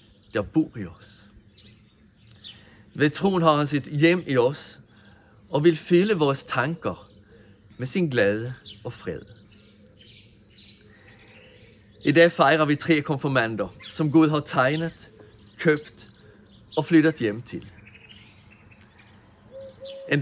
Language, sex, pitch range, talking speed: Danish, male, 105-155 Hz, 110 wpm